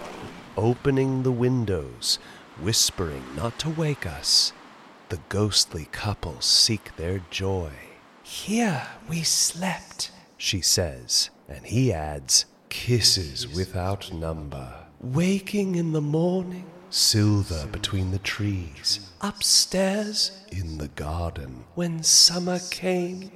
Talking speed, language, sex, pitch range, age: 105 wpm, English, male, 85-120 Hz, 30-49